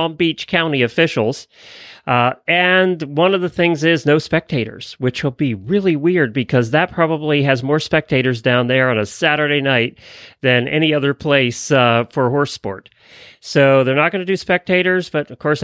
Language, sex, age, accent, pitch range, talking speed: English, male, 40-59, American, 115-165 Hz, 180 wpm